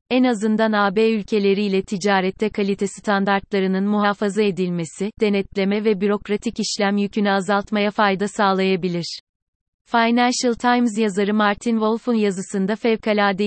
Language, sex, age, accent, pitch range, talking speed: Turkish, female, 30-49, native, 195-220 Hz, 105 wpm